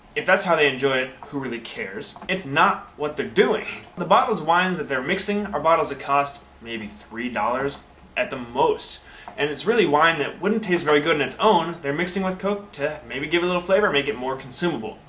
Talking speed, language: 225 wpm, English